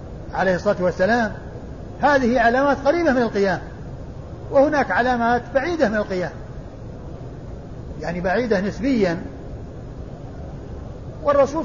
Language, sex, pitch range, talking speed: Arabic, male, 195-235 Hz, 90 wpm